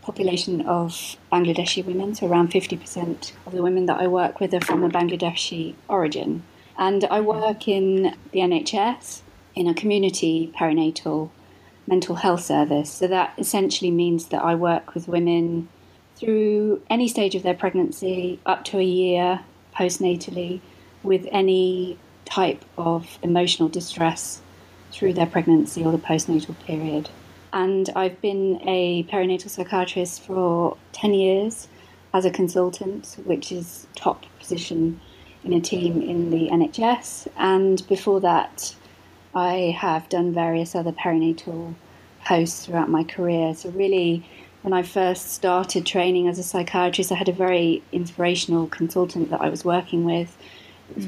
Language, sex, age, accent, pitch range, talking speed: English, female, 30-49, British, 165-185 Hz, 145 wpm